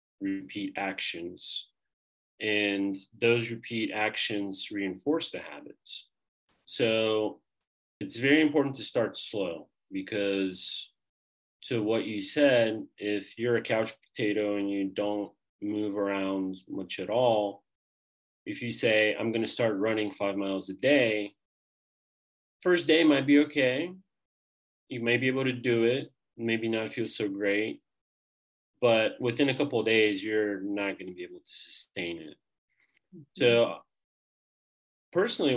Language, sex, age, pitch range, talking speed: English, male, 30-49, 100-115 Hz, 135 wpm